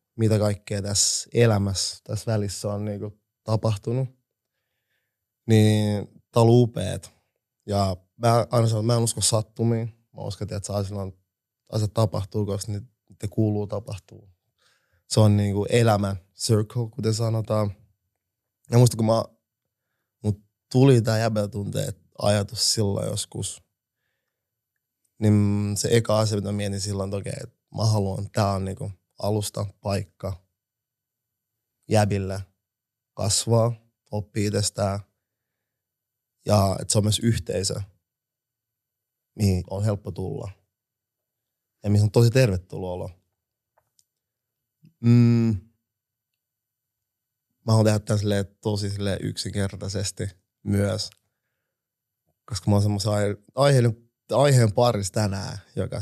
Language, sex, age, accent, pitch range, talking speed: Finnish, male, 20-39, native, 100-115 Hz, 115 wpm